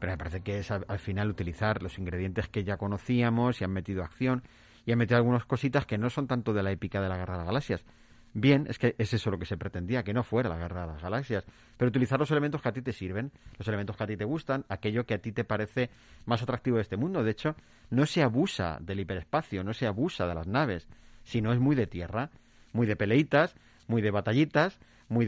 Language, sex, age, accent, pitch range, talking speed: Spanish, male, 40-59, Spanish, 100-130 Hz, 245 wpm